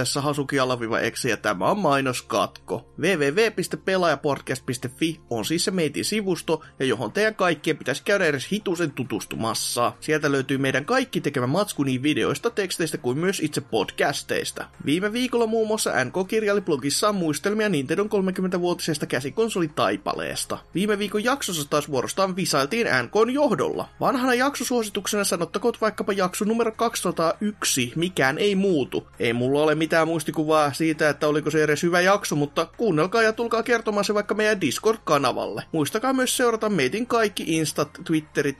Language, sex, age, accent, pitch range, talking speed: Finnish, male, 30-49, native, 150-215 Hz, 140 wpm